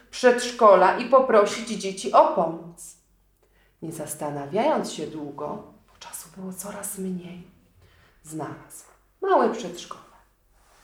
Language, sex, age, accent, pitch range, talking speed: Polish, female, 40-59, native, 170-225 Hz, 100 wpm